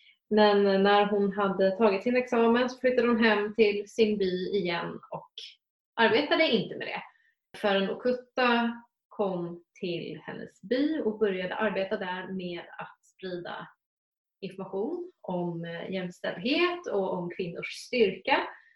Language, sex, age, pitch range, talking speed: Swedish, female, 20-39, 185-220 Hz, 130 wpm